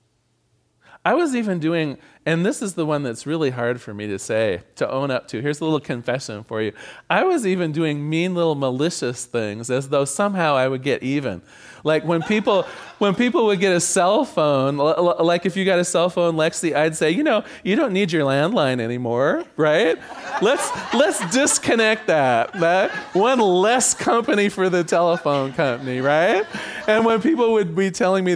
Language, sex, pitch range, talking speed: English, male, 145-205 Hz, 190 wpm